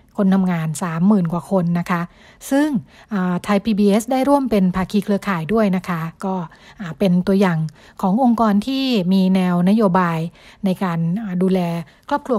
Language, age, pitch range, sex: Thai, 60-79, 185-230 Hz, female